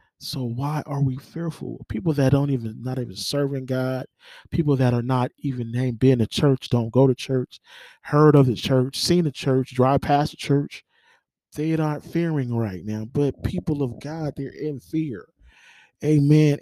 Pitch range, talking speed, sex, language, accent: 120-150 Hz, 180 wpm, male, English, American